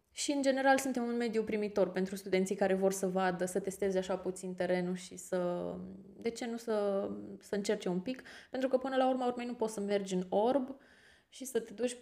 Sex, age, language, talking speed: female, 20-39, Romanian, 220 wpm